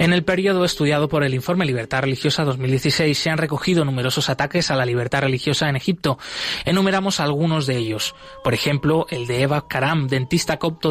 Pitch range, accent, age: 135-160 Hz, Spanish, 20-39